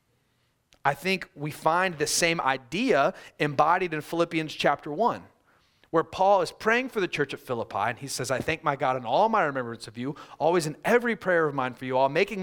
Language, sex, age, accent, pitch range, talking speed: English, male, 30-49, American, 145-200 Hz, 210 wpm